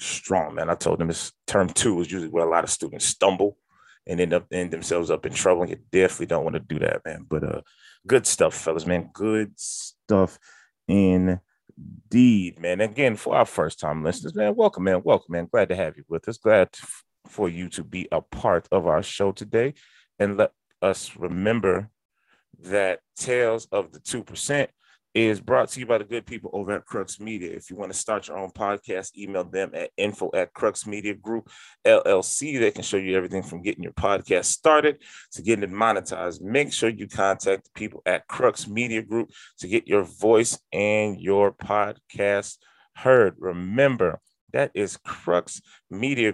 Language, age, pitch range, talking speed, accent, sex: English, 30-49, 90-110 Hz, 190 wpm, American, male